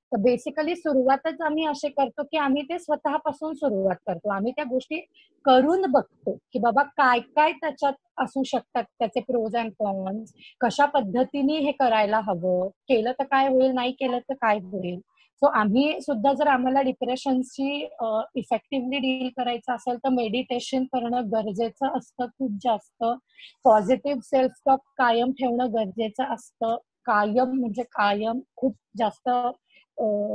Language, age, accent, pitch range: Marathi, 30-49, native, 235-290 Hz